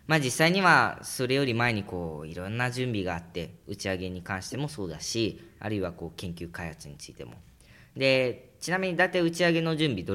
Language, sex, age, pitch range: Japanese, female, 20-39, 90-135 Hz